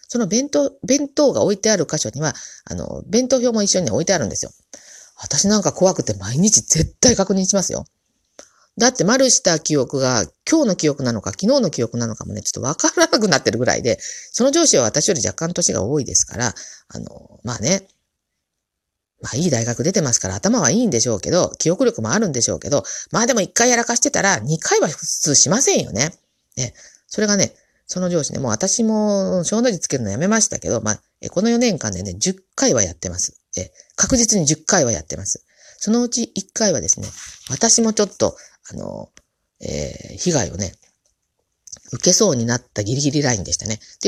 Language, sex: Japanese, female